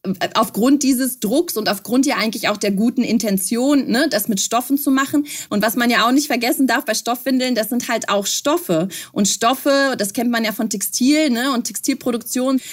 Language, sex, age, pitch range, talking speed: German, female, 30-49, 210-275 Hz, 205 wpm